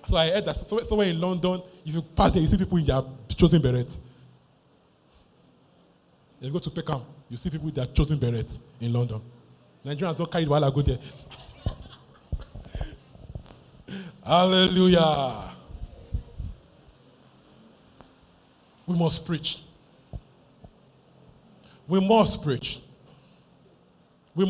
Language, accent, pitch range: English, Nigerian, 135-170 Hz